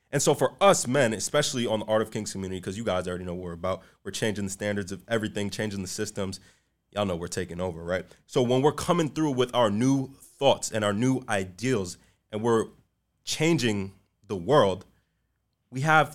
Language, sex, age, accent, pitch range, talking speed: English, male, 20-39, American, 100-125 Hz, 205 wpm